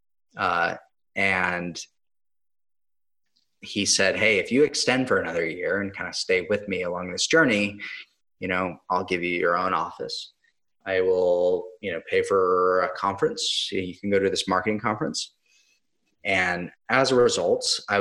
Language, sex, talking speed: English, male, 160 wpm